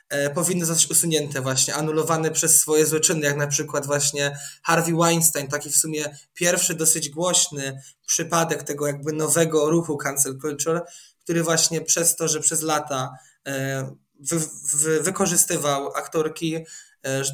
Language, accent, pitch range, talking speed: Polish, native, 145-175 Hz, 145 wpm